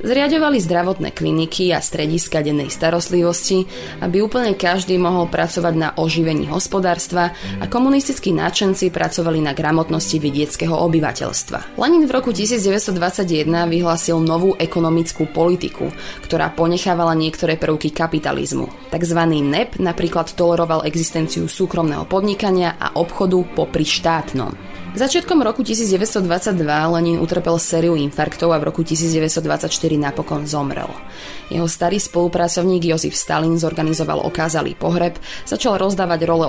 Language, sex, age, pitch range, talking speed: Slovak, female, 20-39, 160-185 Hz, 120 wpm